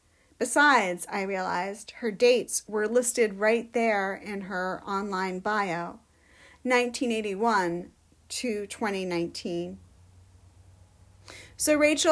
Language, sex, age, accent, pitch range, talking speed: English, female, 40-59, American, 200-255 Hz, 80 wpm